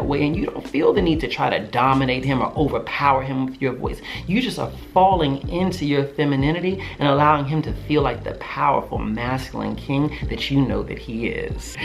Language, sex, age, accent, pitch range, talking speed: English, male, 40-59, American, 150-215 Hz, 210 wpm